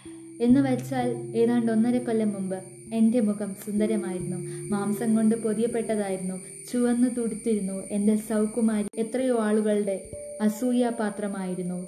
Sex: female